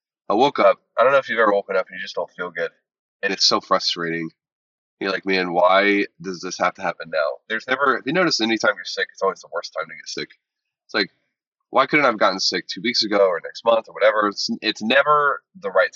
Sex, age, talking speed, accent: male, 20-39, 255 wpm, American